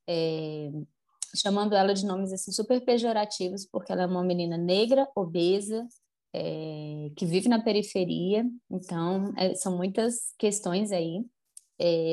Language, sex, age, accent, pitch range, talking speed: Portuguese, female, 20-39, Brazilian, 175-215 Hz, 135 wpm